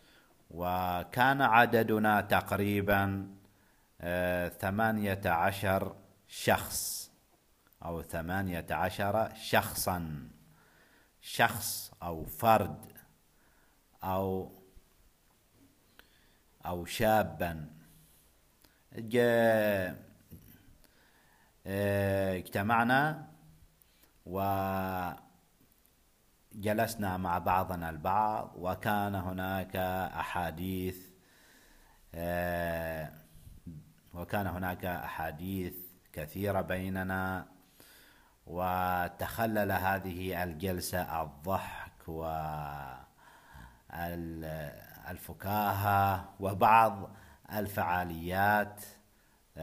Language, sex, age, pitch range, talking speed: Arabic, male, 50-69, 85-100 Hz, 45 wpm